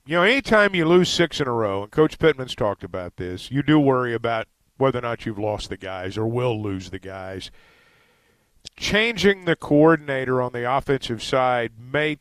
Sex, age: male, 50-69